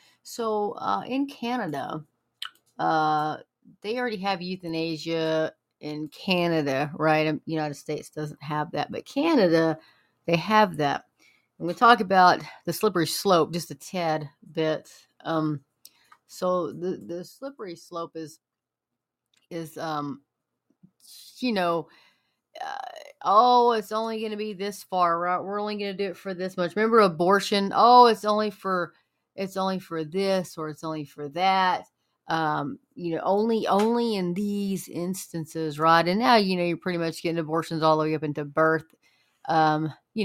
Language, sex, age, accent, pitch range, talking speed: English, female, 30-49, American, 155-195 Hz, 155 wpm